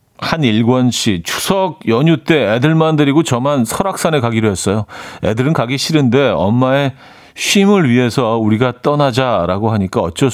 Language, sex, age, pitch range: Korean, male, 40-59, 110-155 Hz